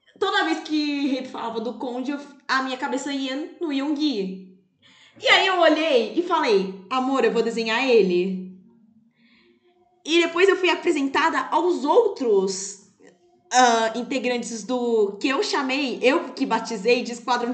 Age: 20-39